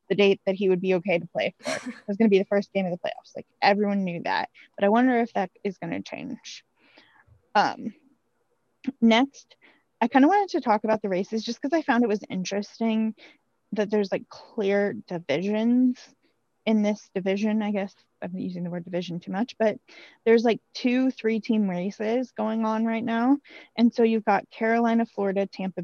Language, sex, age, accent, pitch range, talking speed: English, female, 20-39, American, 185-230 Hz, 200 wpm